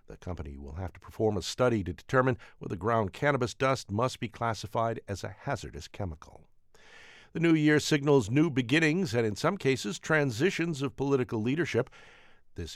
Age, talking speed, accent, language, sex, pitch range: 50-69, 170 wpm, American, English, male, 100-135 Hz